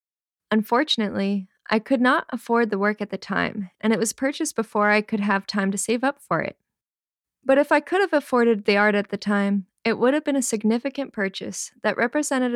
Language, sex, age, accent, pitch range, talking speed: English, female, 10-29, American, 200-255 Hz, 210 wpm